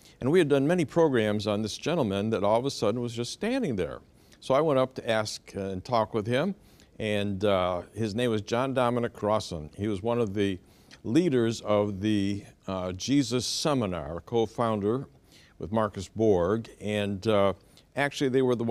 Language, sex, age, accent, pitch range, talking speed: English, male, 60-79, American, 105-140 Hz, 185 wpm